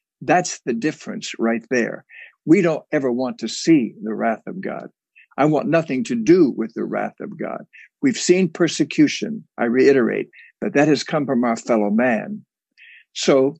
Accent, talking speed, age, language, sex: American, 170 wpm, 60-79, English, male